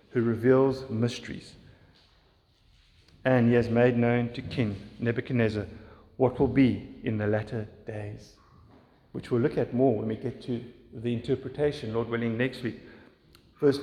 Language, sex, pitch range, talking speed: English, male, 115-165 Hz, 150 wpm